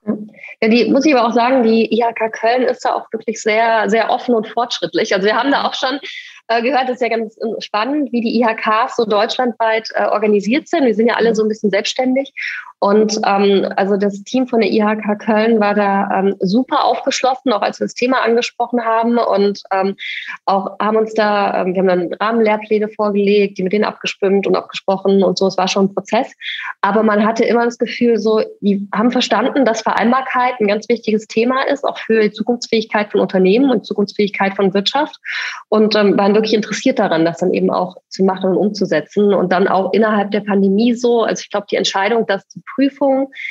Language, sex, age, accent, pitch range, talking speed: German, female, 20-39, German, 200-235 Hz, 205 wpm